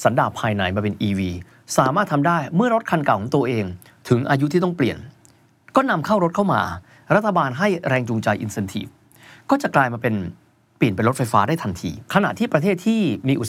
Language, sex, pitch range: Thai, male, 115-180 Hz